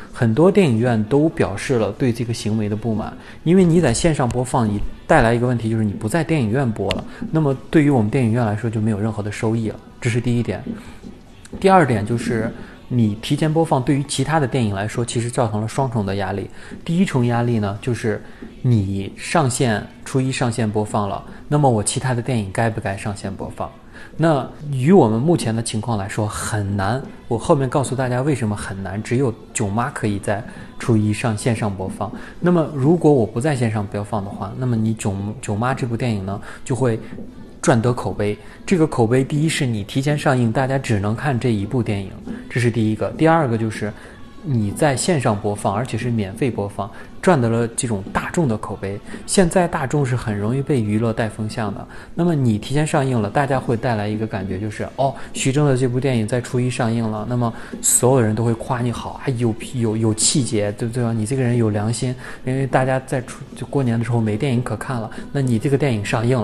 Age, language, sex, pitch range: 20-39, Chinese, male, 110-135 Hz